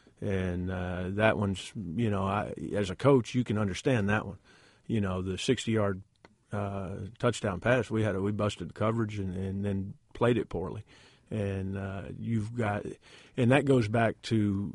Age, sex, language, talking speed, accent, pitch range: 40-59, male, English, 185 wpm, American, 95-115 Hz